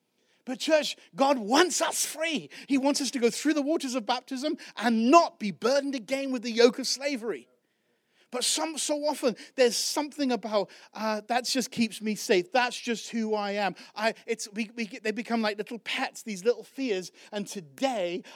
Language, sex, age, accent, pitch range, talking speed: English, male, 40-59, British, 190-250 Hz, 170 wpm